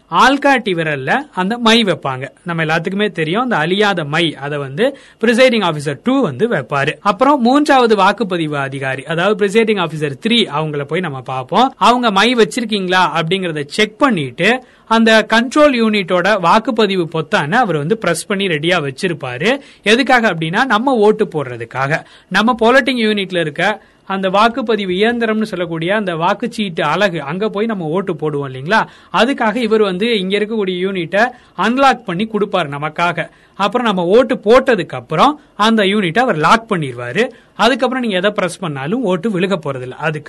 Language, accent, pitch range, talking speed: Tamil, native, 165-225 Hz, 90 wpm